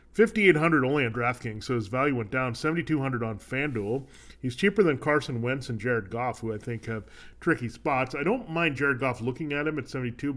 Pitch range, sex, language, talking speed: 120-155 Hz, male, English, 210 wpm